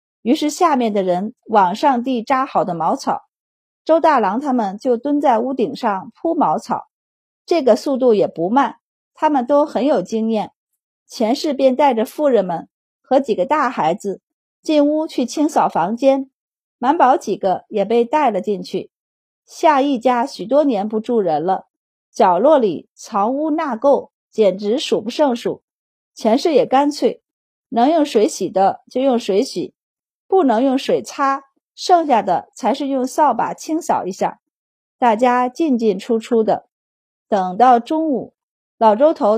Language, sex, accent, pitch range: Chinese, female, native, 225-295 Hz